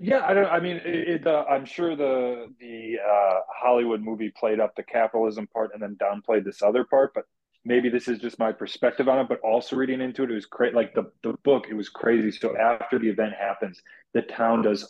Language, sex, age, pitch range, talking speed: English, male, 30-49, 105-125 Hz, 230 wpm